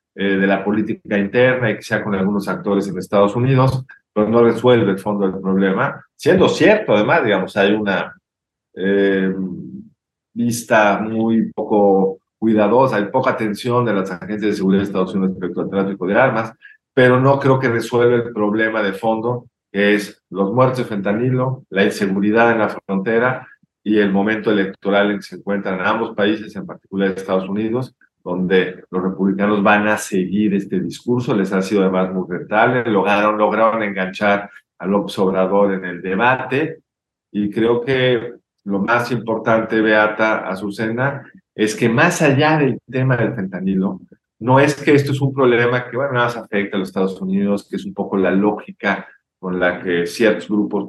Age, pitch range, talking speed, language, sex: 50-69, 95-115 Hz, 175 wpm, Spanish, male